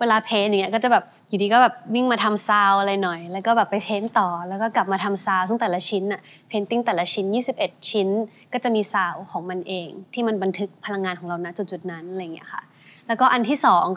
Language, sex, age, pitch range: Thai, female, 20-39, 190-230 Hz